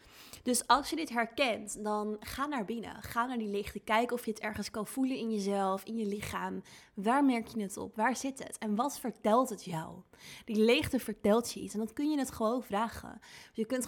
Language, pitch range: Dutch, 200-235 Hz